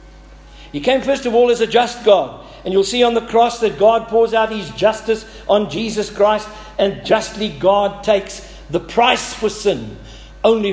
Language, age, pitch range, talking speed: English, 60-79, 165-215 Hz, 185 wpm